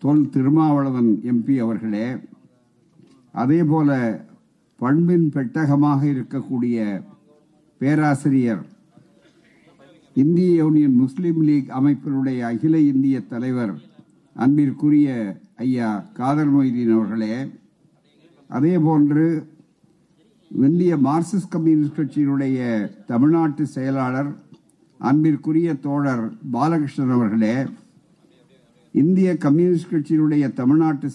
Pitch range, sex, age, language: 135-160 Hz, male, 50-69, Tamil